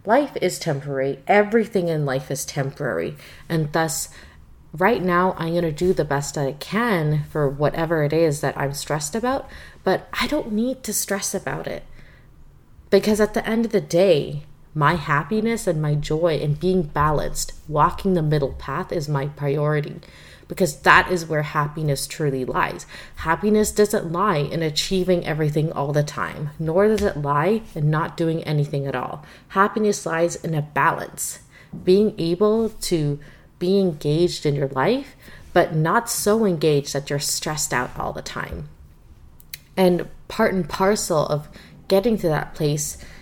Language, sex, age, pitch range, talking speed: English, female, 20-39, 145-195 Hz, 160 wpm